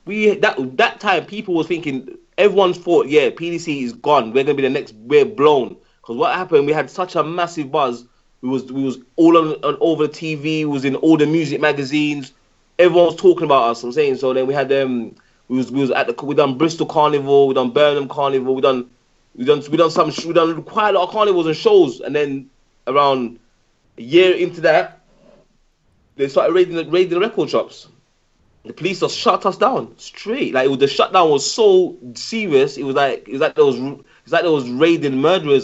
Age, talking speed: 20-39, 220 wpm